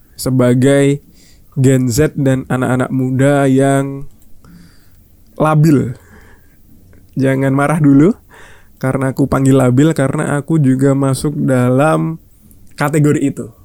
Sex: male